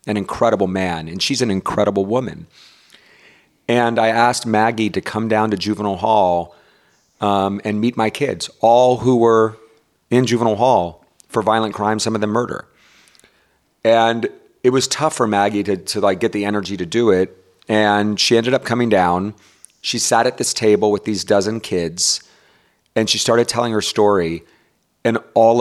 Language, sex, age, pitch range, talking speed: English, male, 40-59, 100-120 Hz, 170 wpm